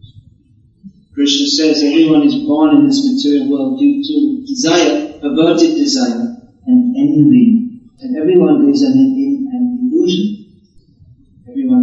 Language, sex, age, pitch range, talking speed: English, male, 30-49, 165-270 Hz, 115 wpm